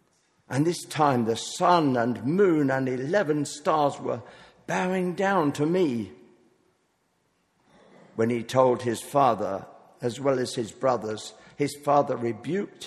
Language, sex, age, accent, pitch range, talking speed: English, male, 50-69, British, 115-140 Hz, 130 wpm